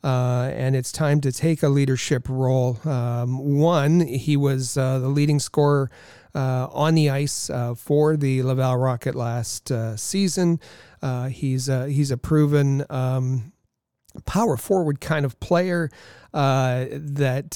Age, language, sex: 40-59, English, male